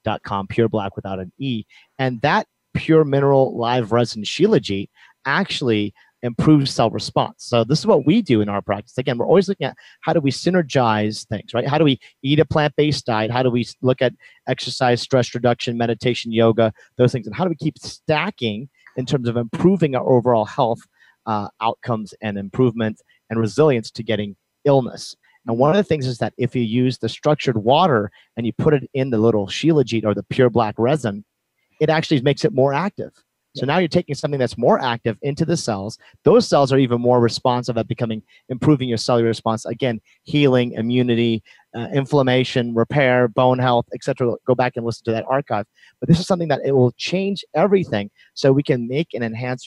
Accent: American